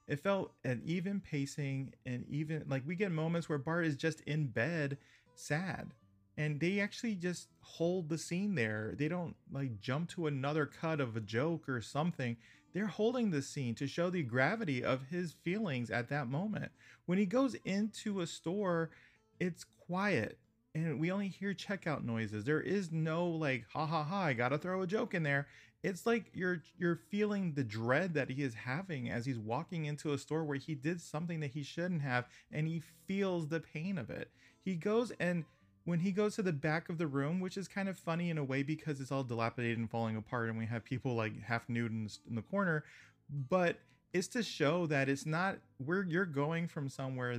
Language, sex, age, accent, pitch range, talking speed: English, male, 30-49, American, 130-180 Hz, 205 wpm